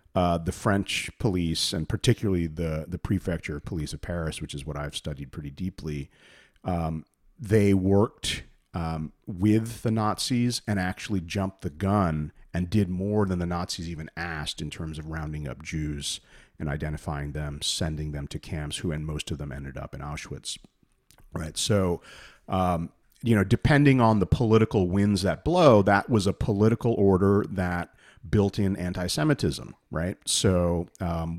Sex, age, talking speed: male, 40-59, 160 wpm